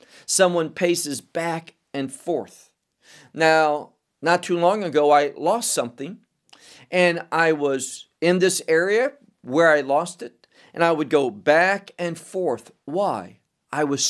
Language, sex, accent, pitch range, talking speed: English, male, American, 140-180 Hz, 140 wpm